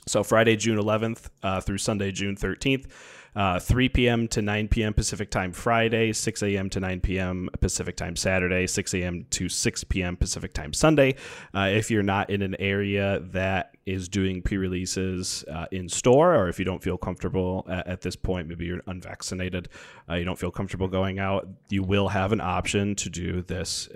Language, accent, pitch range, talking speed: English, American, 95-115 Hz, 190 wpm